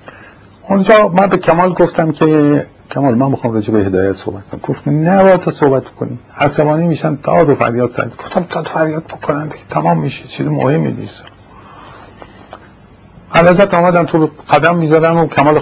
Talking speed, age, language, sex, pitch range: 165 wpm, 50-69, Persian, male, 110-160 Hz